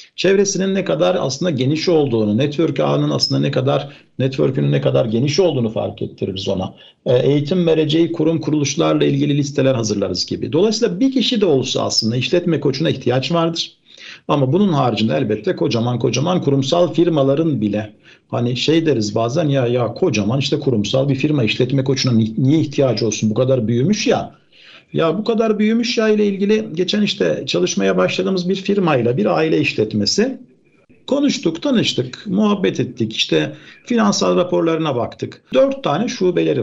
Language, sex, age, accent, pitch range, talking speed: Turkish, male, 50-69, native, 115-190 Hz, 150 wpm